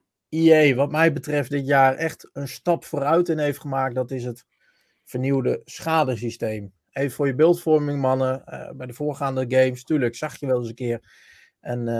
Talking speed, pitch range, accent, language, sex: 180 wpm, 130-160 Hz, Dutch, Dutch, male